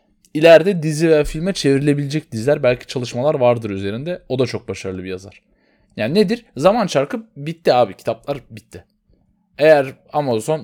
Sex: male